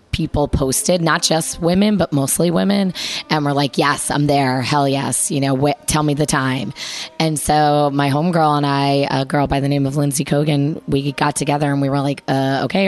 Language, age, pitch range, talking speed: English, 20-39, 145-180 Hz, 210 wpm